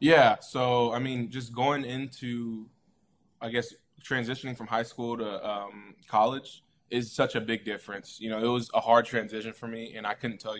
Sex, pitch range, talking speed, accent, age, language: male, 105-120 Hz, 195 wpm, American, 20-39, English